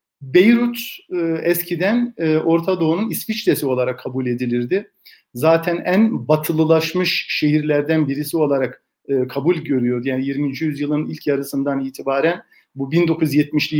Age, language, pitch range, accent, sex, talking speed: 50-69, Turkish, 140-175 Hz, native, male, 105 wpm